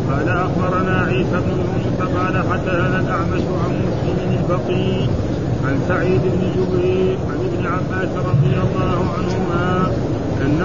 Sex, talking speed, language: male, 130 wpm, Arabic